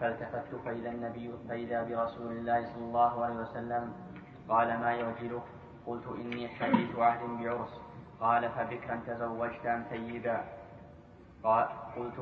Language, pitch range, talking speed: Arabic, 115-120 Hz, 120 wpm